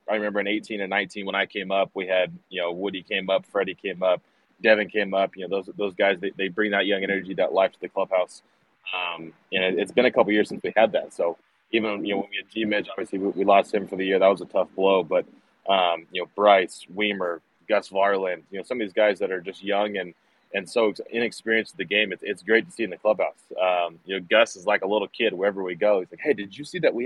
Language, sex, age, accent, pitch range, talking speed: English, male, 20-39, American, 95-110 Hz, 280 wpm